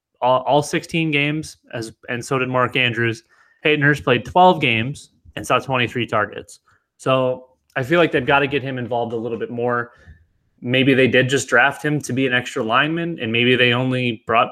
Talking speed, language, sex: 200 wpm, English, male